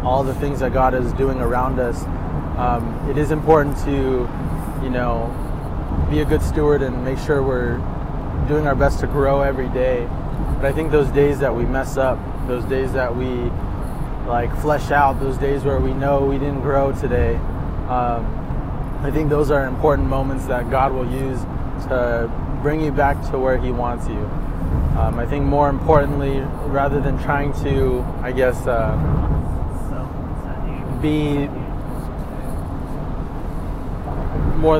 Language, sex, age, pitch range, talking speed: English, male, 20-39, 120-140 Hz, 155 wpm